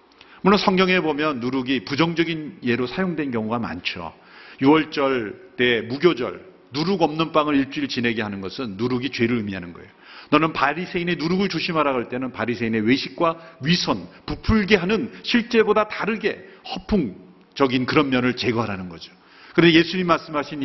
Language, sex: Korean, male